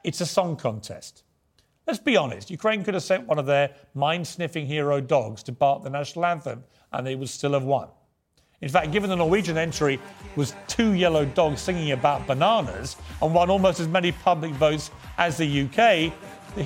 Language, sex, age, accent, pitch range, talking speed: English, male, 40-59, British, 140-190 Hz, 185 wpm